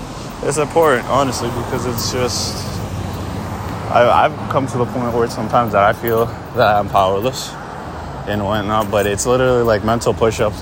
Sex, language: male, English